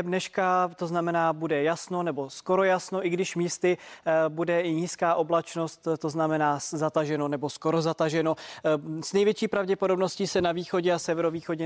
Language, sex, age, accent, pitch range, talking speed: Czech, male, 20-39, native, 155-180 Hz, 150 wpm